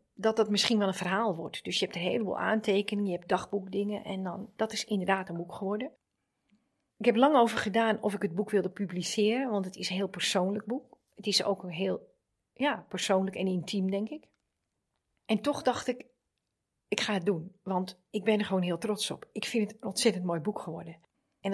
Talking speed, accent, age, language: 215 wpm, Dutch, 40-59, Dutch